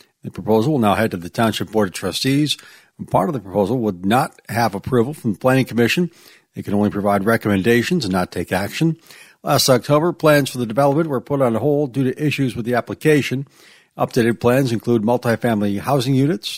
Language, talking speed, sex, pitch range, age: English, 195 wpm, male, 110-140 Hz, 60-79